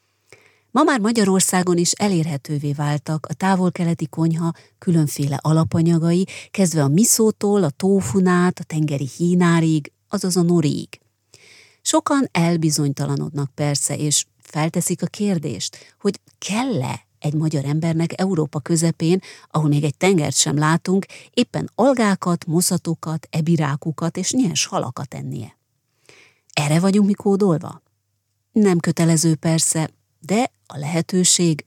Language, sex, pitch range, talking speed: Hungarian, female, 150-185 Hz, 110 wpm